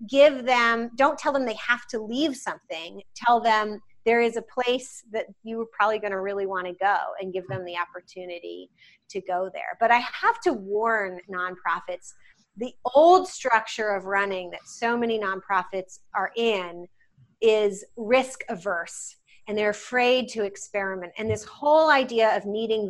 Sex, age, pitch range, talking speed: female, 30-49, 195-245 Hz, 170 wpm